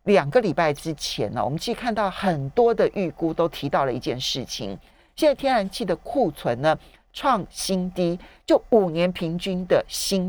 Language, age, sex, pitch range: Chinese, 50-69, male, 155-235 Hz